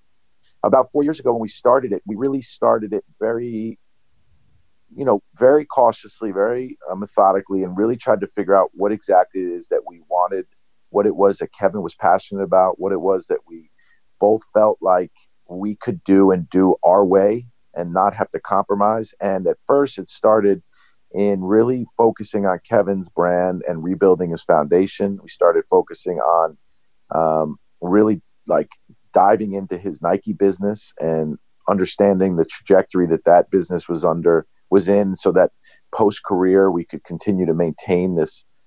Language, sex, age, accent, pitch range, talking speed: English, male, 50-69, American, 90-115 Hz, 170 wpm